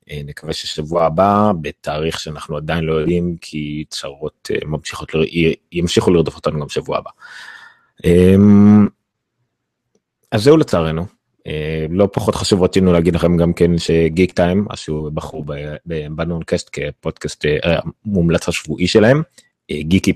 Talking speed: 120 wpm